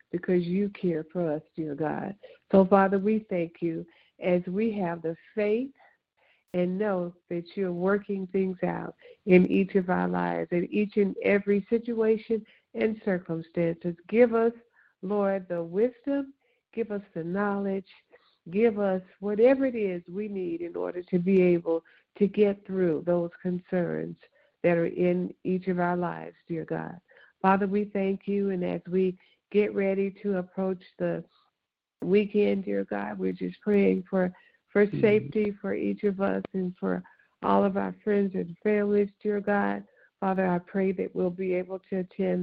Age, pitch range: 60-79, 175-205 Hz